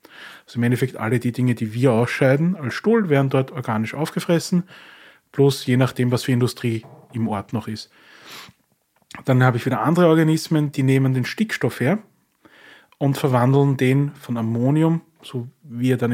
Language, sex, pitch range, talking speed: German, male, 120-150 Hz, 165 wpm